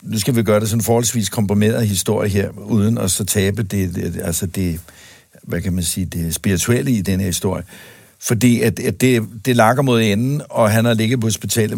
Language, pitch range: Danish, 95-115 Hz